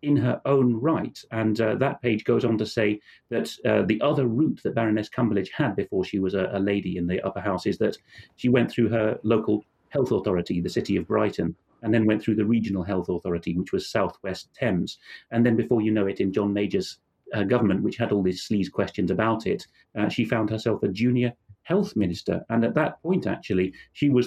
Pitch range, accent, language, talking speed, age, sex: 100-125 Hz, British, English, 225 wpm, 40-59, male